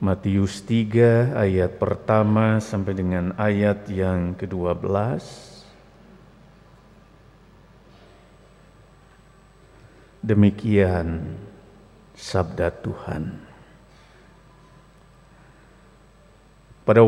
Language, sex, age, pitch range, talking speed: Indonesian, male, 50-69, 100-135 Hz, 45 wpm